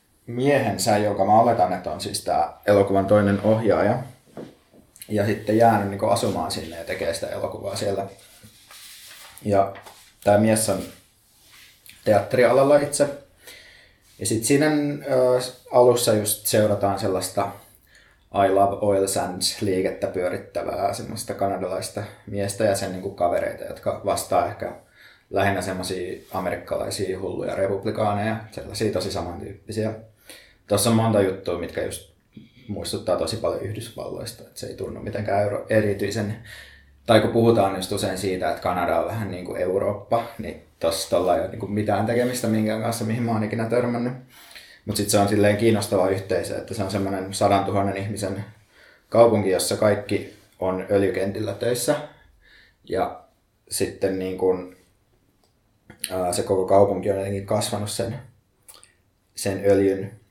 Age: 20-39